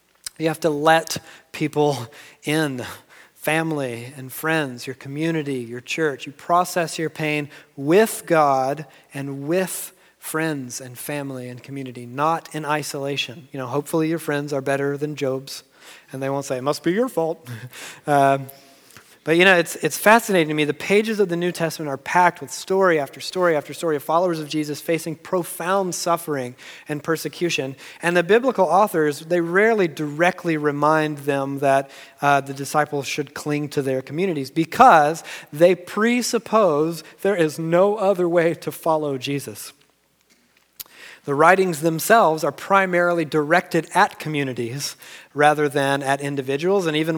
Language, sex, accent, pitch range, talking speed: English, male, American, 140-170 Hz, 155 wpm